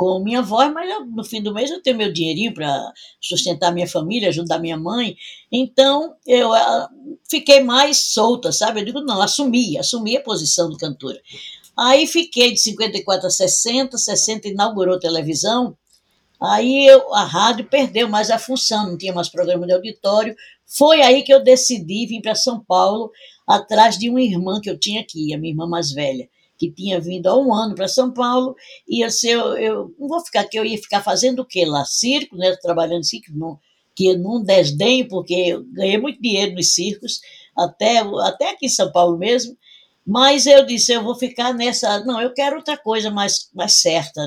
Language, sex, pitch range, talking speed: Portuguese, female, 180-250 Hz, 190 wpm